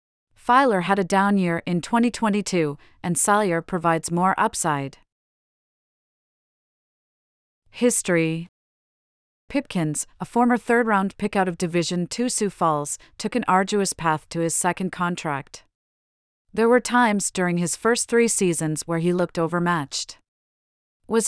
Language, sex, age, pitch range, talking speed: English, female, 30-49, 165-205 Hz, 125 wpm